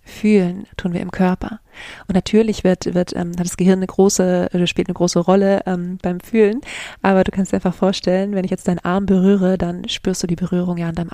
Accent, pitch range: German, 175-195 Hz